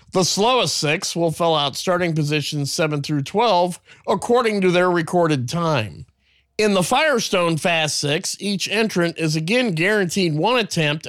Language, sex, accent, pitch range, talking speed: English, male, American, 150-185 Hz, 150 wpm